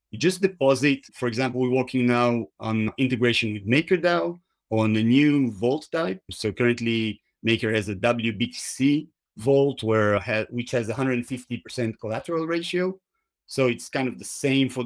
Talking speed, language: 150 wpm, English